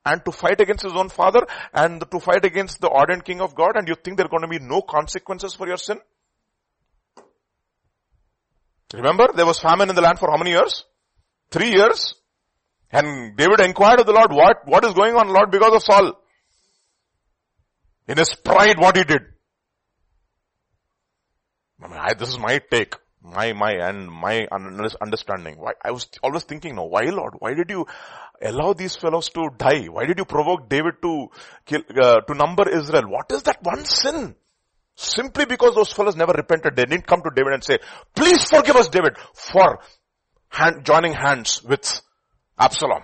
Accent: Indian